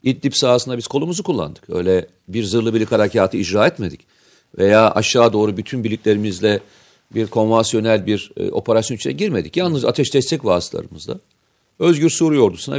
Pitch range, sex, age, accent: 105-140 Hz, male, 40-59, native